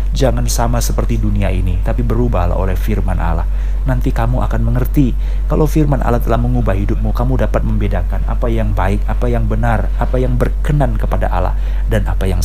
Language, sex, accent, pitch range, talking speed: Indonesian, male, native, 100-130 Hz, 180 wpm